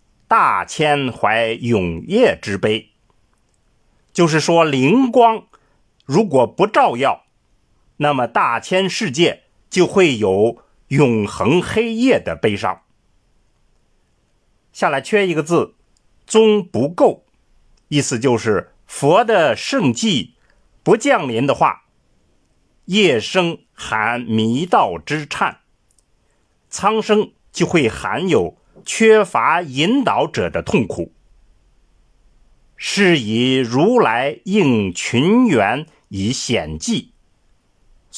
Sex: male